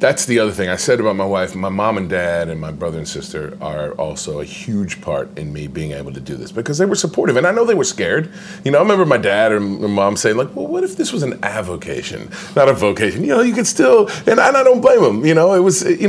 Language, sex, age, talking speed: English, male, 30-49, 285 wpm